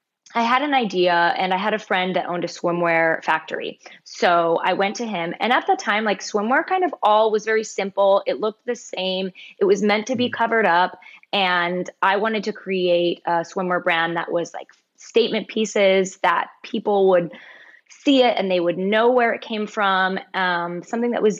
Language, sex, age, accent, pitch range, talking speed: English, female, 20-39, American, 175-210 Hz, 200 wpm